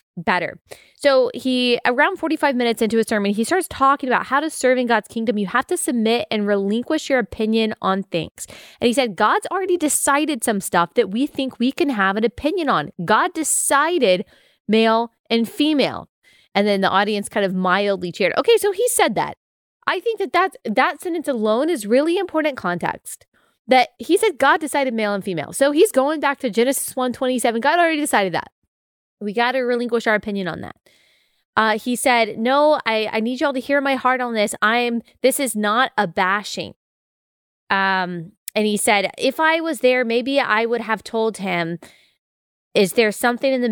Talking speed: 195 wpm